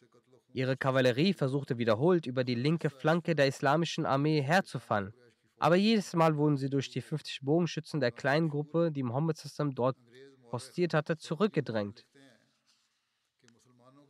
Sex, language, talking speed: male, German, 130 wpm